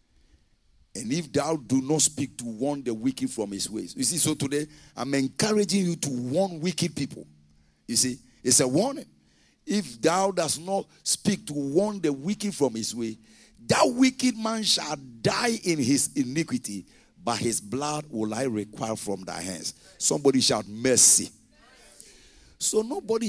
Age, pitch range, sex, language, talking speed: 50-69, 120-175 Hz, male, English, 160 wpm